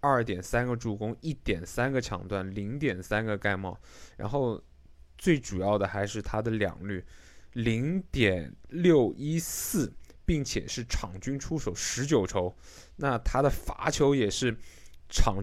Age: 20-39